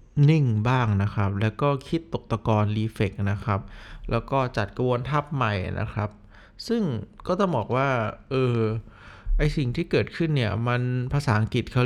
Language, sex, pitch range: Thai, male, 105-130 Hz